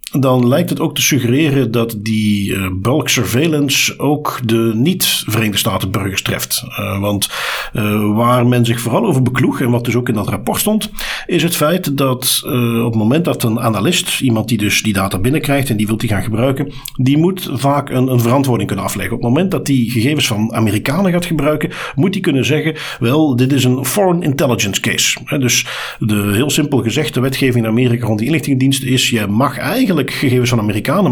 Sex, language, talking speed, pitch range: male, Dutch, 195 wpm, 110-140 Hz